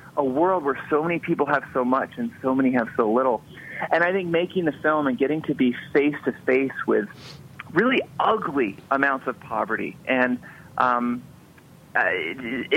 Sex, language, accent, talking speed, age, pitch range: male, English, American, 175 wpm, 40-59, 130-170 Hz